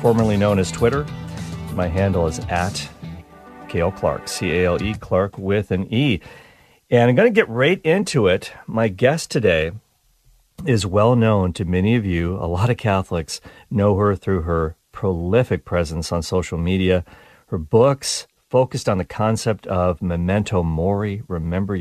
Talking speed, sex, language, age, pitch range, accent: 155 wpm, male, English, 40-59, 90-125 Hz, American